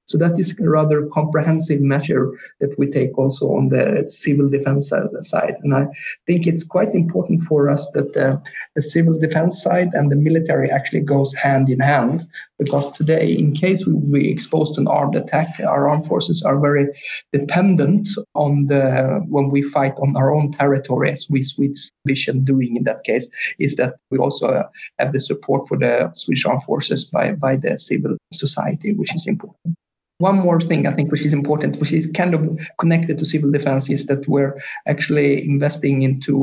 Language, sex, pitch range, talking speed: English, male, 140-160 Hz, 190 wpm